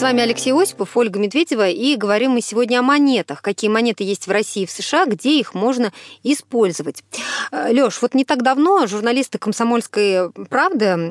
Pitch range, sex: 195-260 Hz, female